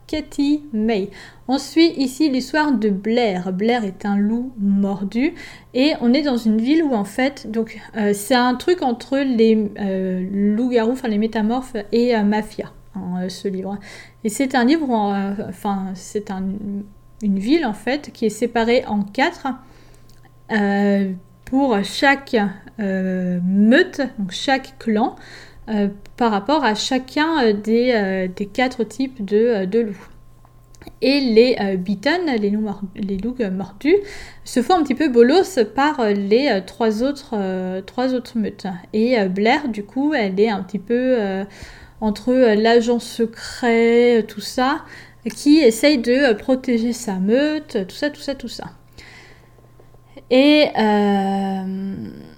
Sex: female